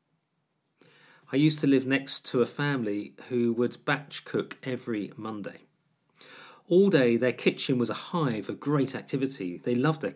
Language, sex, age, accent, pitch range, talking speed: English, male, 40-59, British, 115-160 Hz, 160 wpm